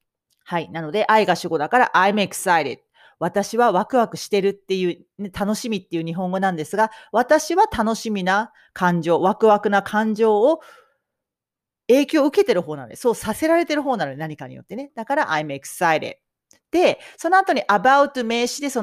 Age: 40-59